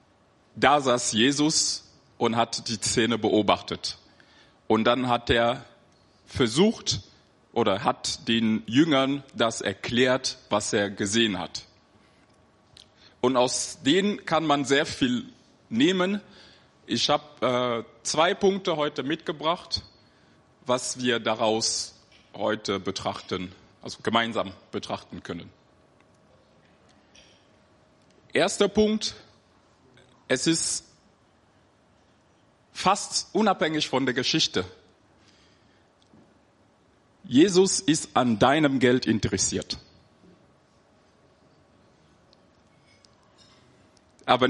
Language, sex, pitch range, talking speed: German, male, 105-145 Hz, 85 wpm